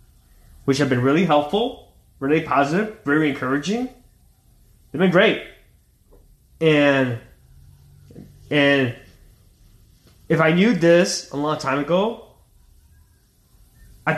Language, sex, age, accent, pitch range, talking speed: English, male, 20-39, American, 125-160 Hz, 95 wpm